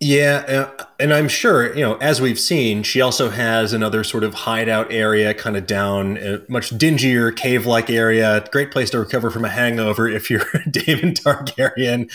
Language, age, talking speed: English, 30-49, 185 wpm